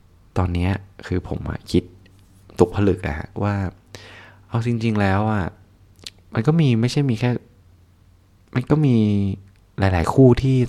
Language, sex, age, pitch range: Thai, male, 20-39, 90-110 Hz